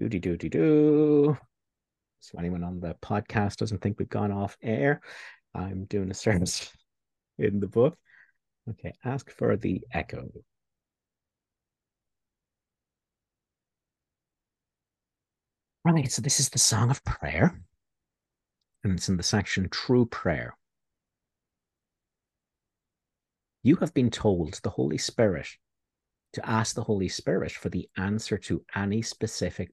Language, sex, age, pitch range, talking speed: English, male, 50-69, 90-115 Hz, 110 wpm